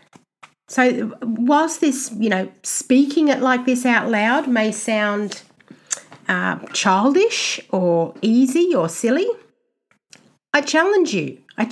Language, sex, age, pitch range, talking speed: English, female, 50-69, 215-285 Hz, 120 wpm